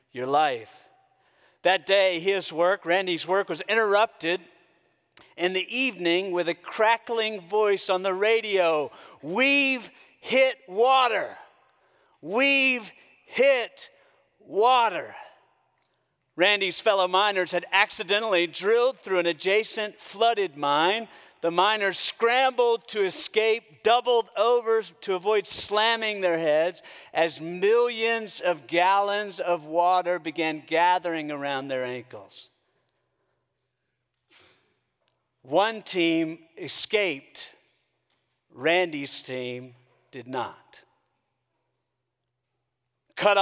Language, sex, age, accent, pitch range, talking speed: English, male, 50-69, American, 165-215 Hz, 95 wpm